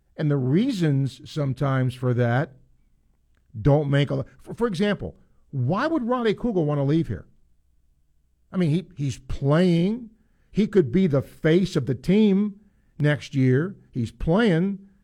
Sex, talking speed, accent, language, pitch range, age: male, 150 wpm, American, English, 115-170 Hz, 50-69